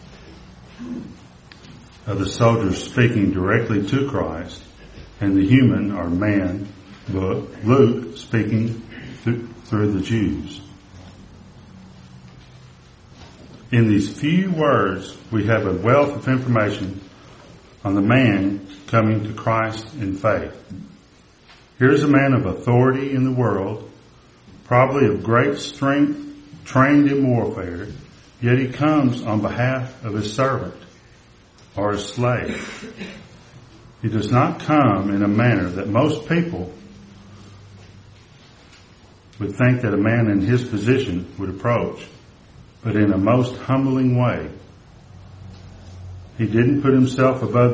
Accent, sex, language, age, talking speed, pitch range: American, male, English, 60-79, 115 wpm, 100-130 Hz